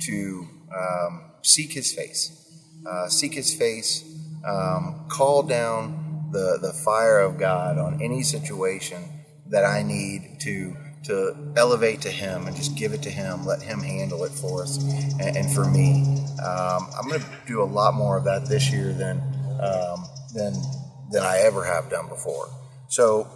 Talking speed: 170 wpm